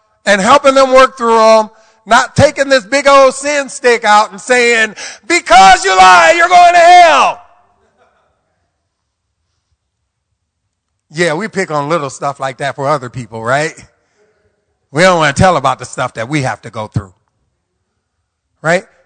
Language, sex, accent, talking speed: English, male, American, 155 wpm